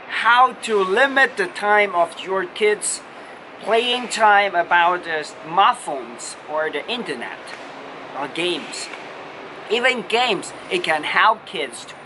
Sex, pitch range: male, 185-245 Hz